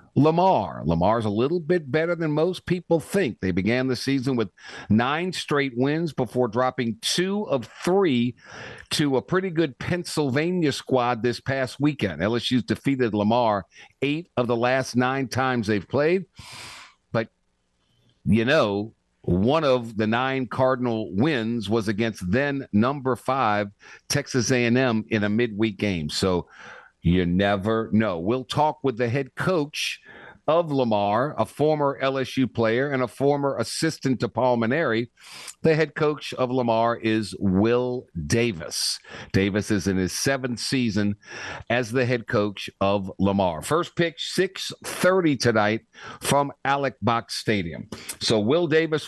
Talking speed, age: 145 wpm, 50-69